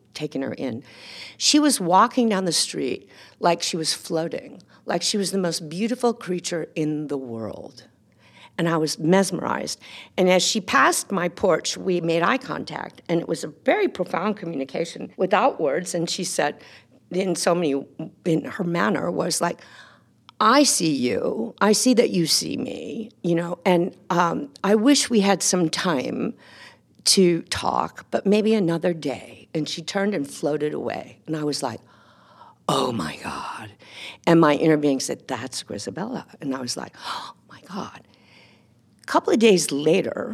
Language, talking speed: English, 170 wpm